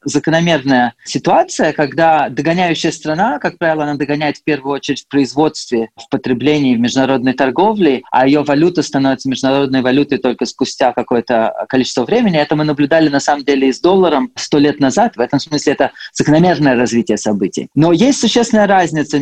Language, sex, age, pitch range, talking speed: Russian, male, 30-49, 130-170 Hz, 170 wpm